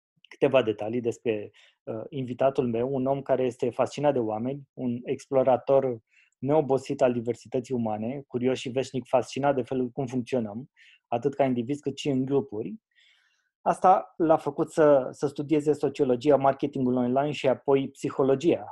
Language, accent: Romanian, native